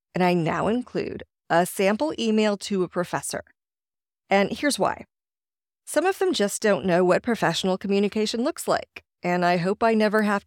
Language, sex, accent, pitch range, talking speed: English, female, American, 175-225 Hz, 170 wpm